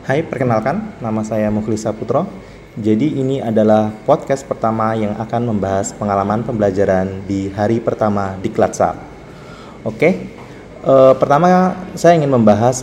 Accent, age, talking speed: native, 20-39, 125 wpm